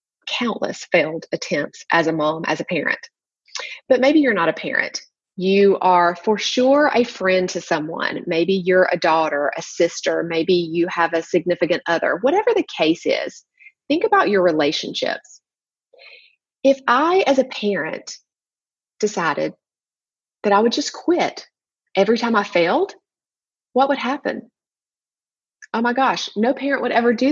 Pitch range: 180-265 Hz